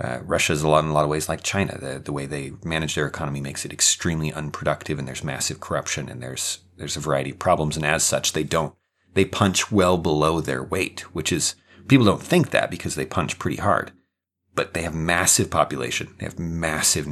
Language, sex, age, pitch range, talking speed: English, male, 30-49, 75-95 Hz, 225 wpm